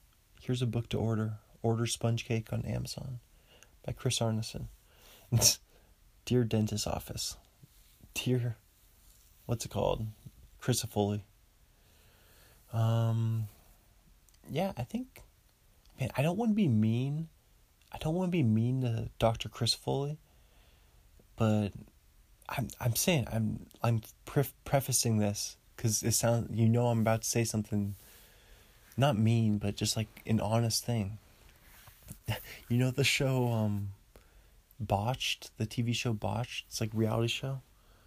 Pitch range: 105-120 Hz